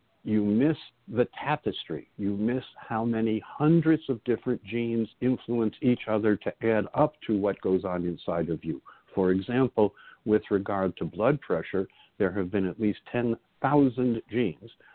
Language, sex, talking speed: English, male, 155 wpm